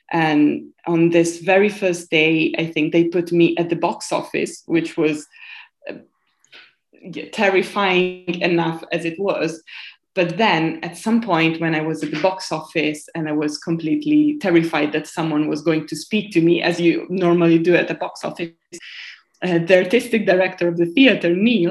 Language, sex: English, female